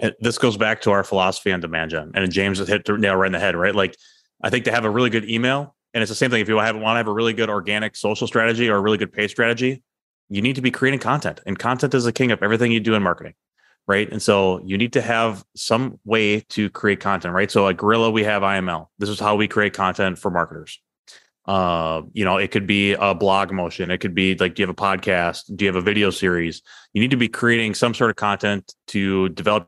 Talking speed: 270 wpm